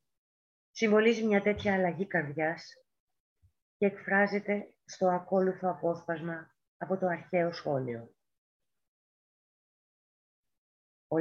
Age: 30-49